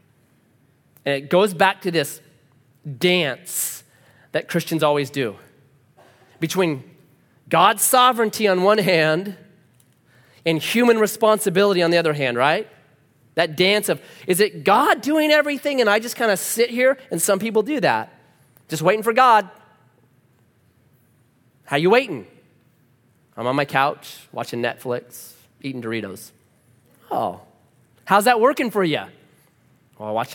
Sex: male